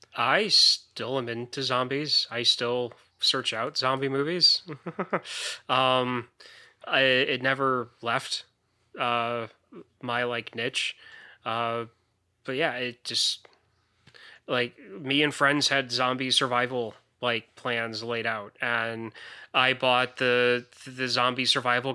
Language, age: English, 20-39